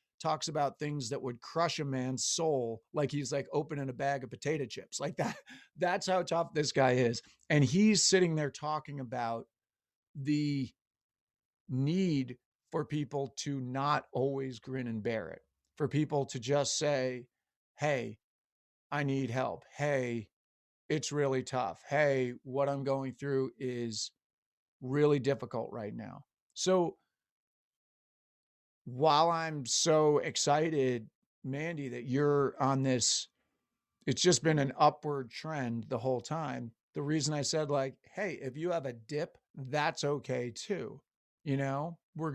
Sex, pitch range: male, 130-150 Hz